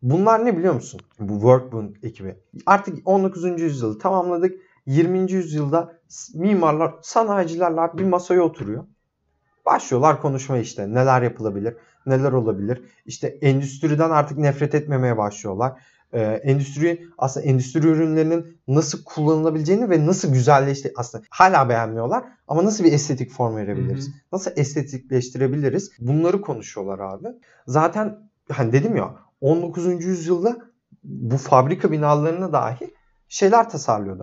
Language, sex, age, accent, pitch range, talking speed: Turkish, male, 30-49, native, 115-170 Hz, 115 wpm